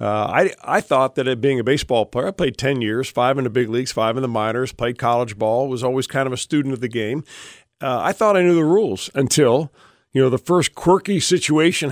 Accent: American